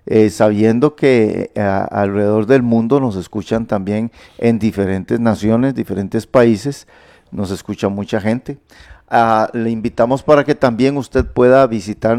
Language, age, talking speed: Spanish, 50-69, 145 wpm